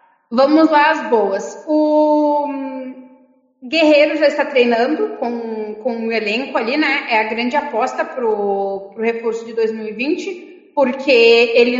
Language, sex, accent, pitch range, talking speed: Portuguese, female, Brazilian, 230-285 Hz, 130 wpm